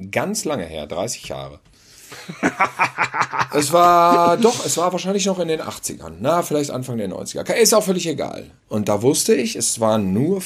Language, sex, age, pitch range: German, male, 50-69, 105-155 Hz